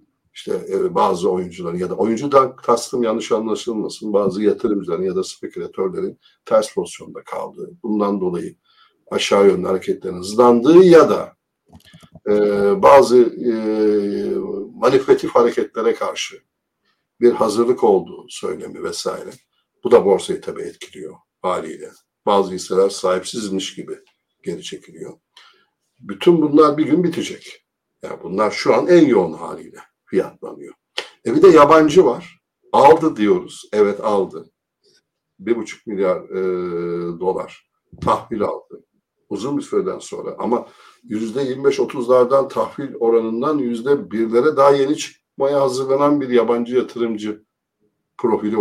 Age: 60-79